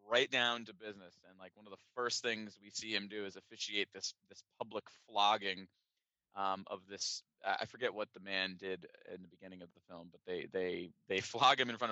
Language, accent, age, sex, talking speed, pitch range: English, American, 30-49, male, 220 wpm, 95-120 Hz